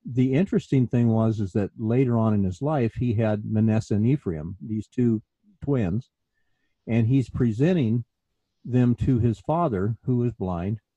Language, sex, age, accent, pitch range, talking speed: English, male, 50-69, American, 100-125 Hz, 160 wpm